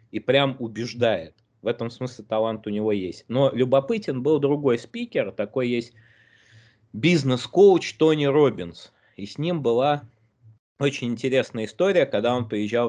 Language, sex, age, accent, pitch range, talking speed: Russian, male, 20-39, native, 110-140 Hz, 140 wpm